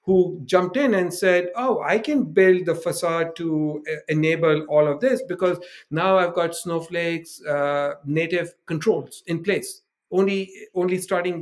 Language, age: English, 60-79